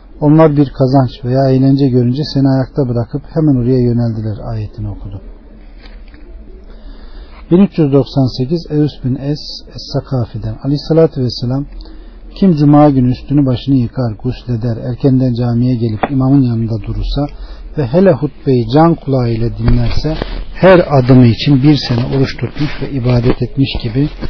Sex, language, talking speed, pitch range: male, Turkish, 125 wpm, 120-150 Hz